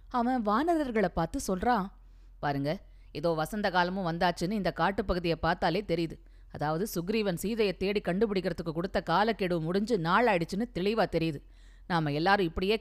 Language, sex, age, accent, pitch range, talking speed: Tamil, female, 20-39, native, 150-195 Hz, 125 wpm